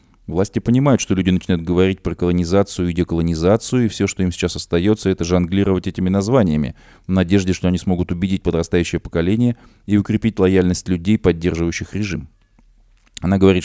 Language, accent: Russian, native